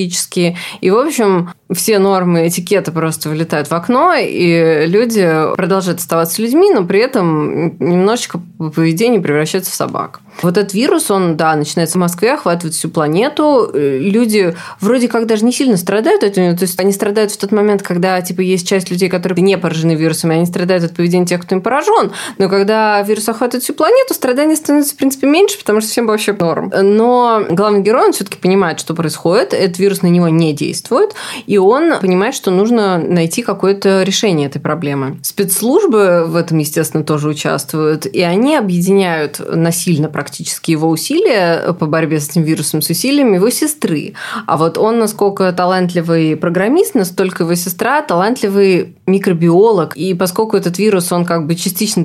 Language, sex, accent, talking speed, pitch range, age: Russian, female, native, 175 wpm, 165-215 Hz, 20-39